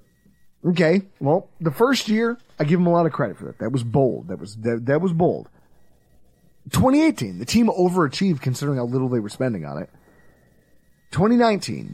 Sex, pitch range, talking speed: male, 120-170 Hz, 180 wpm